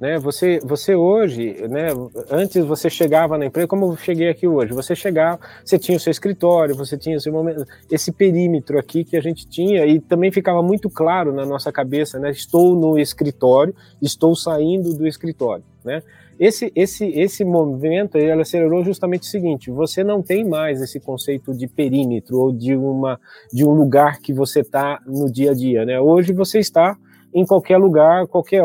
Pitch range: 145-175 Hz